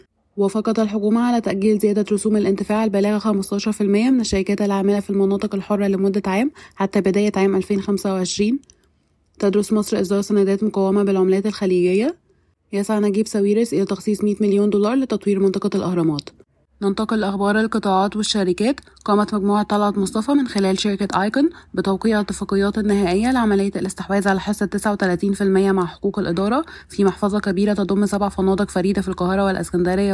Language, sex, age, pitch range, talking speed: Arabic, female, 20-39, 190-210 Hz, 145 wpm